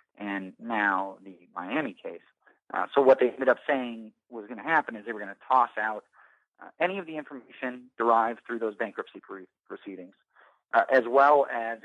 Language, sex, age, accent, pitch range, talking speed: English, male, 30-49, American, 105-130 Hz, 190 wpm